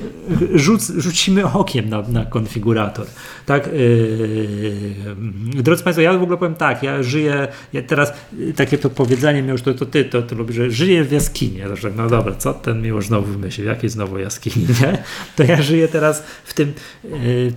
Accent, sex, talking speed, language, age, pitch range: native, male, 180 wpm, Polish, 40-59, 110-140 Hz